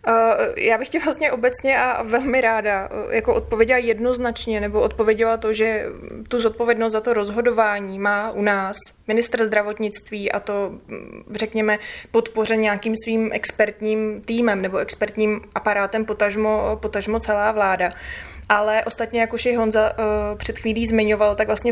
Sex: female